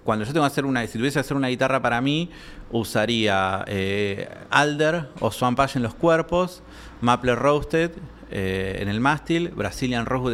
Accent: Argentinian